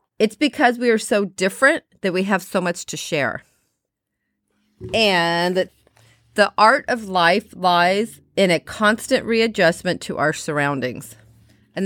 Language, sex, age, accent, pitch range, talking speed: English, female, 40-59, American, 165-220 Hz, 135 wpm